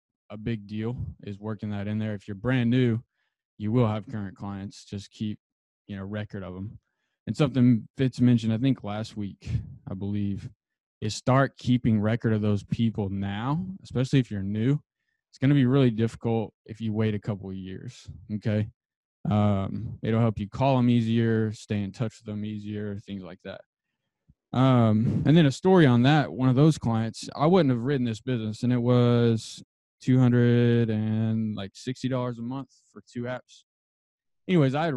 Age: 20-39